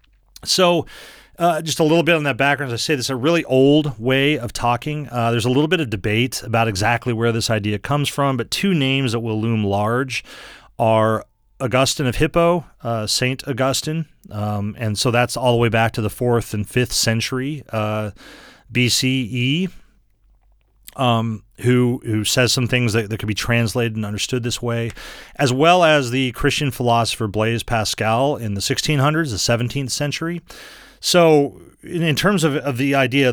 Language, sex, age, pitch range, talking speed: English, male, 40-59, 115-140 Hz, 180 wpm